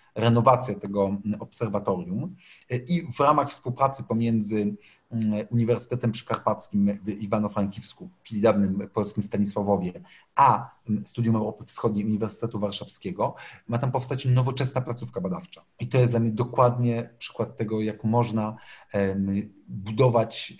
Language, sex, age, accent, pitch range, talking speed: Polish, male, 40-59, native, 105-125 Hz, 115 wpm